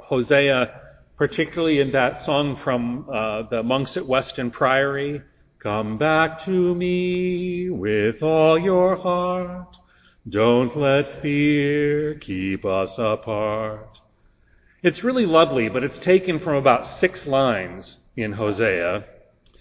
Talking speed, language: 115 wpm, English